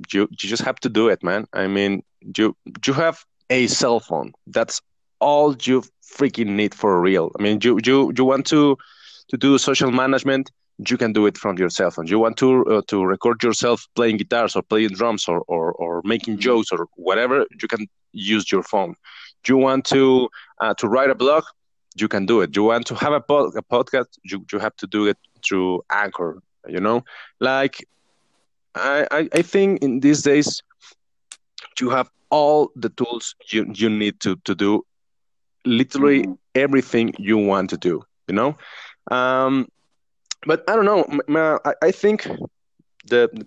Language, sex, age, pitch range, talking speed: English, male, 20-39, 105-135 Hz, 180 wpm